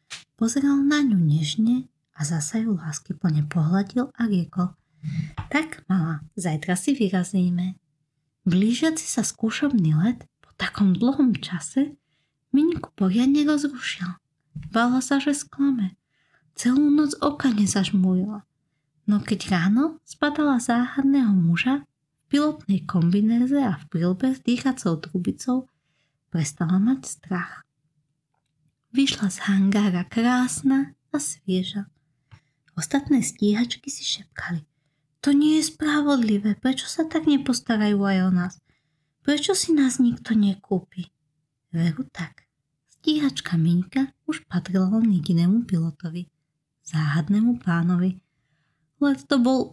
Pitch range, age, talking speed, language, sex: 165-255 Hz, 20-39, 115 wpm, Slovak, female